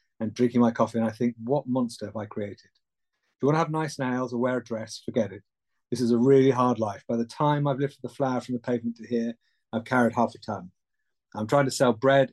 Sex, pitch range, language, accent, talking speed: male, 110-130 Hz, English, British, 260 wpm